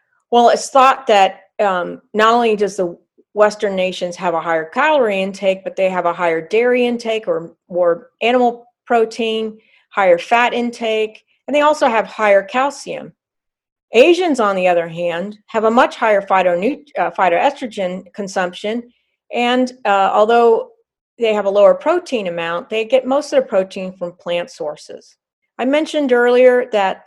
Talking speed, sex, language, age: 155 wpm, female, English, 40-59